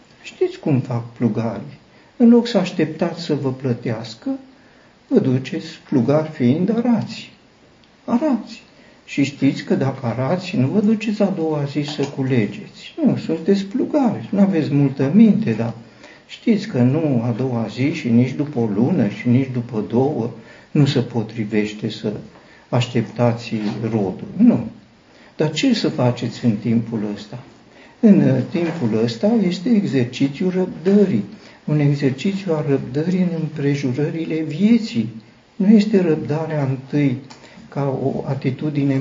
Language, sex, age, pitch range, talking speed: Romanian, male, 50-69, 125-200 Hz, 135 wpm